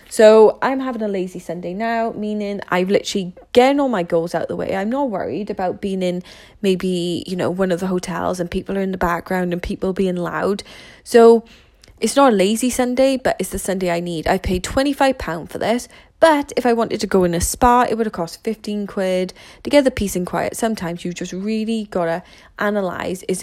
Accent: British